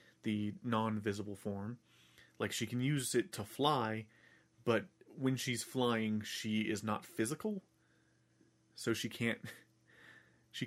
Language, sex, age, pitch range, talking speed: English, male, 30-49, 110-135 Hz, 125 wpm